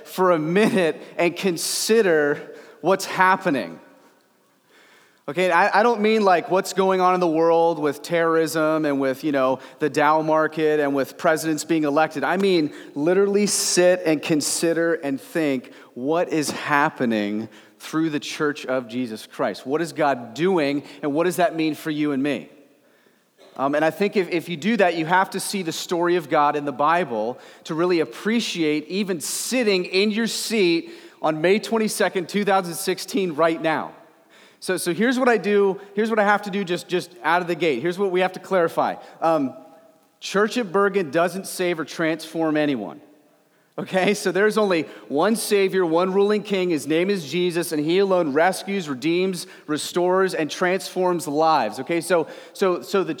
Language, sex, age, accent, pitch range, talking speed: English, male, 30-49, American, 155-195 Hz, 180 wpm